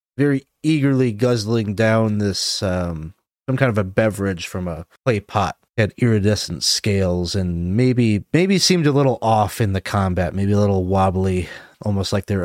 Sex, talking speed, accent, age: male, 170 wpm, American, 30-49